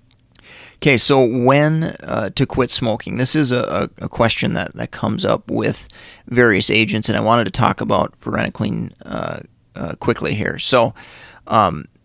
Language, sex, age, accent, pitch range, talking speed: English, male, 30-49, American, 115-130 Hz, 160 wpm